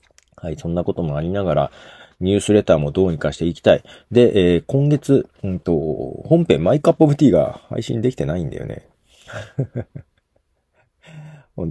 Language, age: Japanese, 40-59